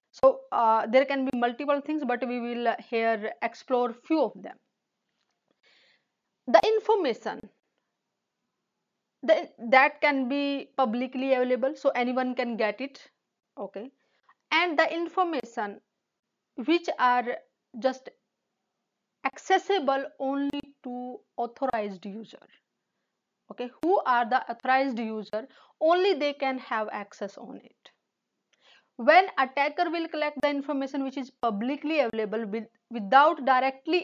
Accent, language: Indian, English